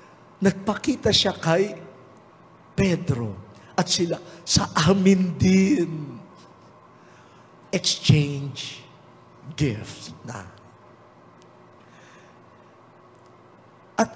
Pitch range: 155-200 Hz